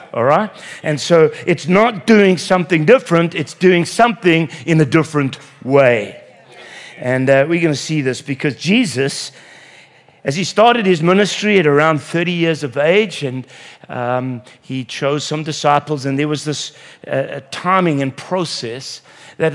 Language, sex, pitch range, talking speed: English, male, 140-180 Hz, 150 wpm